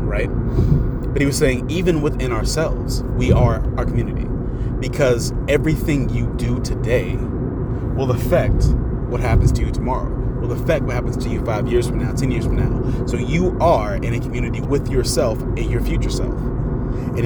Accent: American